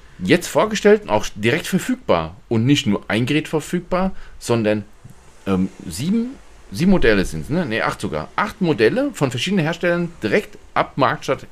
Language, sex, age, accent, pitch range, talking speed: German, male, 40-59, German, 95-140 Hz, 155 wpm